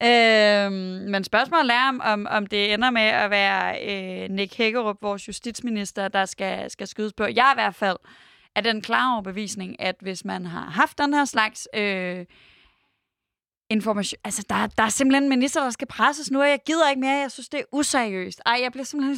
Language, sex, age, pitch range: Danish, female, 20-39, 205-255 Hz